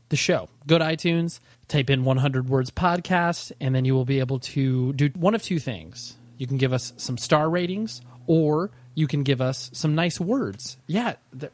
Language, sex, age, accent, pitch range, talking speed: English, male, 20-39, American, 125-160 Hz, 200 wpm